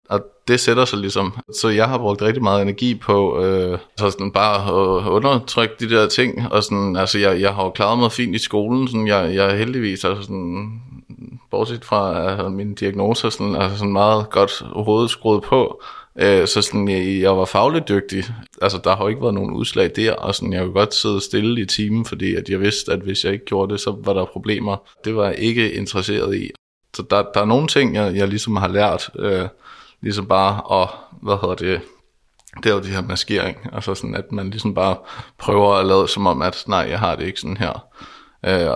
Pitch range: 95-105 Hz